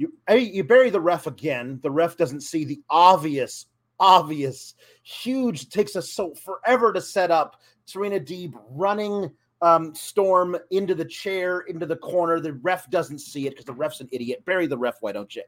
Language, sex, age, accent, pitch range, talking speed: English, male, 30-49, American, 155-220 Hz, 195 wpm